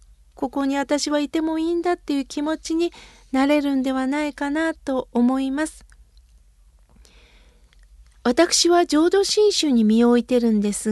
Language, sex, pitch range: Japanese, female, 220-315 Hz